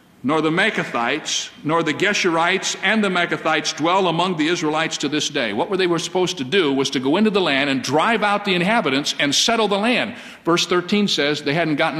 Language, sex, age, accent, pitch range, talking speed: English, male, 50-69, American, 165-215 Hz, 215 wpm